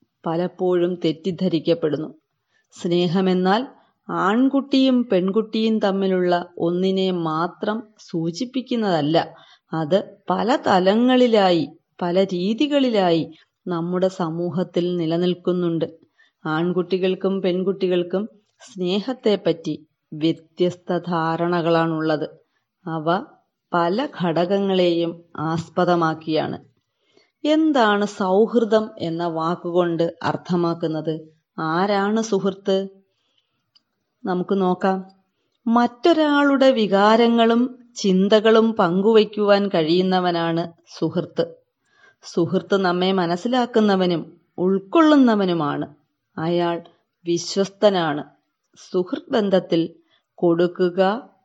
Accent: native